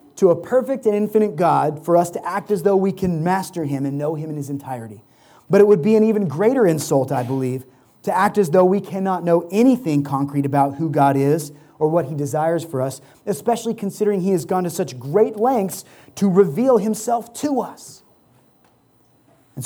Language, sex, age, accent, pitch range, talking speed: English, male, 30-49, American, 130-170 Hz, 200 wpm